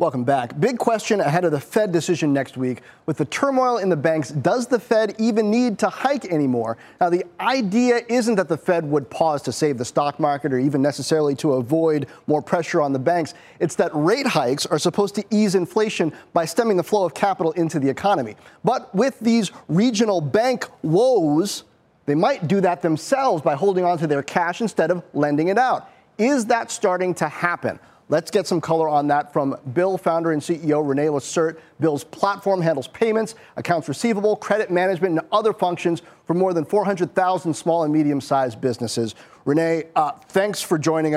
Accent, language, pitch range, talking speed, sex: American, English, 150-205 Hz, 190 wpm, male